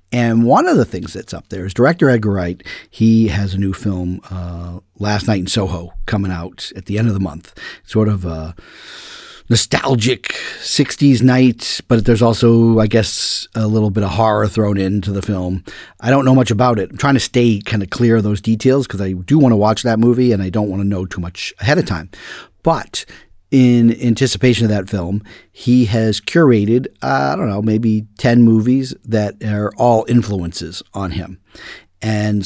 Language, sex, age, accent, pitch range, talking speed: English, male, 40-59, American, 95-120 Hz, 200 wpm